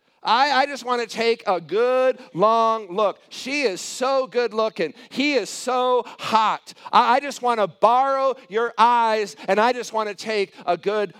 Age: 50-69